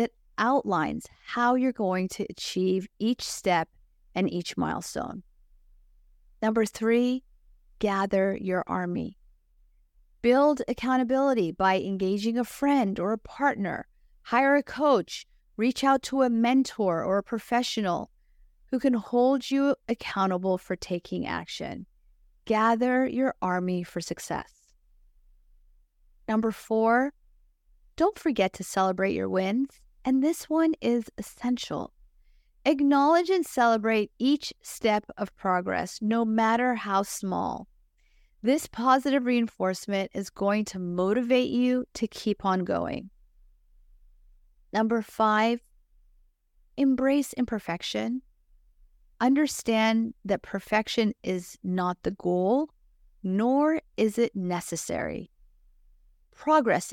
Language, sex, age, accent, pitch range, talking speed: English, female, 40-59, American, 185-255 Hz, 105 wpm